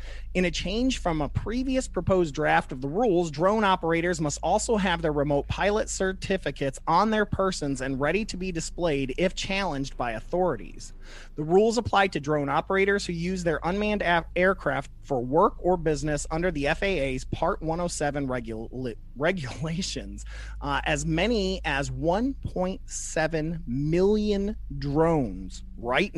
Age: 30-49